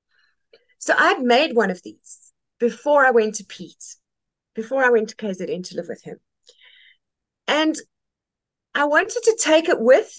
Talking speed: 160 wpm